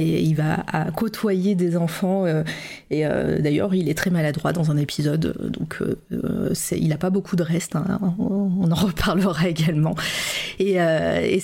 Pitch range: 165-200 Hz